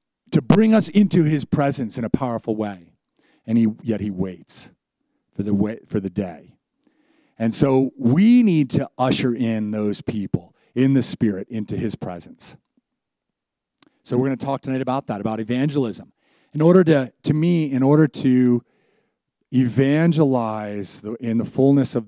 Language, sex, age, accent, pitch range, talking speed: English, male, 40-59, American, 110-140 Hz, 160 wpm